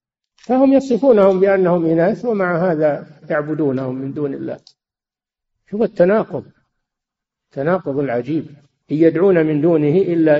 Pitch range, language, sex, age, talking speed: 130-175 Hz, Arabic, male, 50-69, 110 wpm